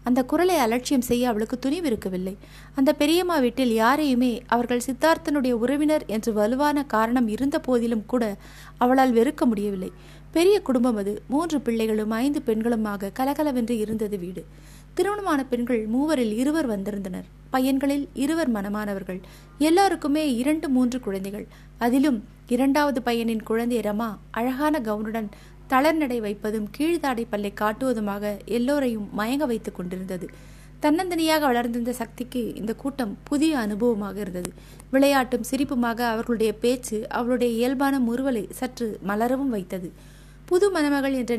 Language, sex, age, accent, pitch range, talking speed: Tamil, female, 20-39, native, 215-275 Hz, 110 wpm